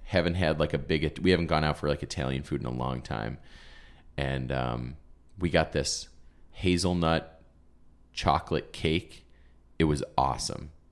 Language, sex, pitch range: English, male, 75-95 Hz